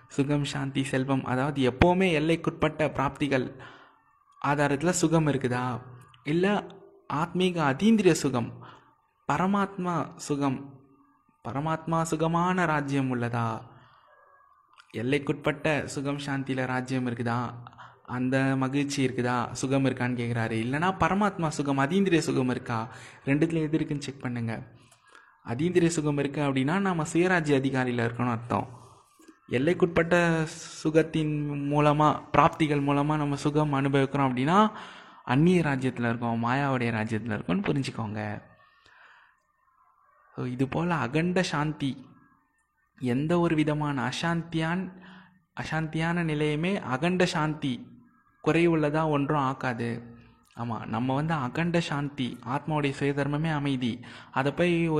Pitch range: 130-160 Hz